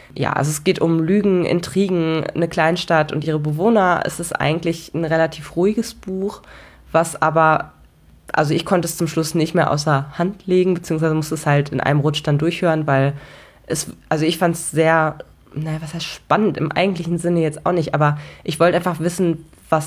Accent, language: German, German